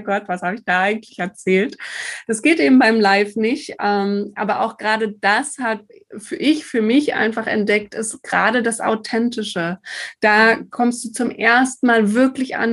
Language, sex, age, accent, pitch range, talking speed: German, female, 20-39, German, 210-250 Hz, 175 wpm